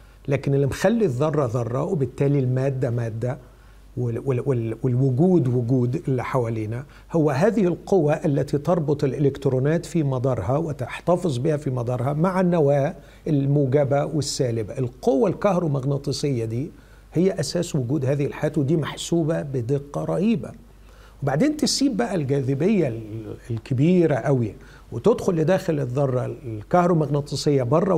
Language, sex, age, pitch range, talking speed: Arabic, male, 50-69, 130-180 Hz, 110 wpm